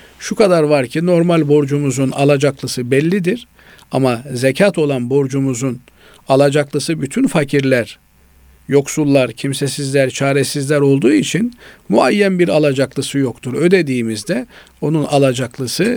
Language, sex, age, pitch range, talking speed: Turkish, male, 50-69, 125-160 Hz, 100 wpm